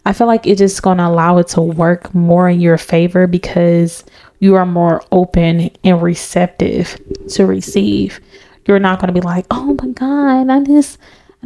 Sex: female